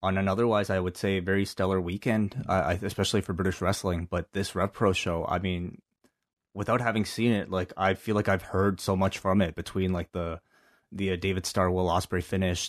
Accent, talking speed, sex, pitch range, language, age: American, 220 wpm, male, 90-105 Hz, English, 20-39